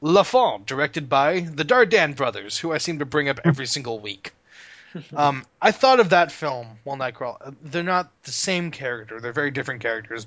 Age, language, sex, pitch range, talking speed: 20-39, English, male, 120-160 Hz, 195 wpm